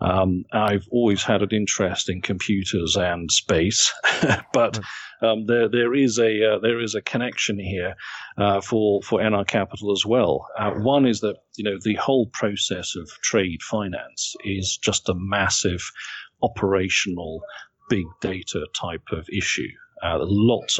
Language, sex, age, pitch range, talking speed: English, male, 40-59, 95-115 Hz, 155 wpm